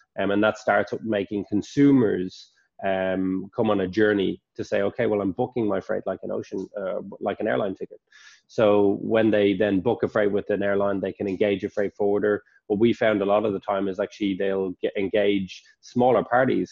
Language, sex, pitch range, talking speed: English, male, 95-110 Hz, 195 wpm